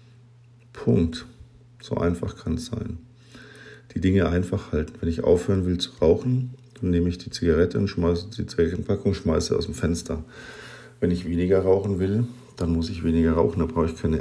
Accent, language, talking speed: German, German, 185 wpm